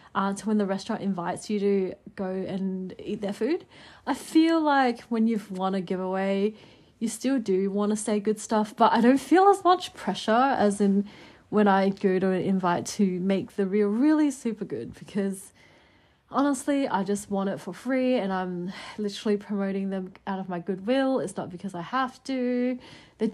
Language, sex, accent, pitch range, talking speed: English, female, Australian, 195-245 Hz, 195 wpm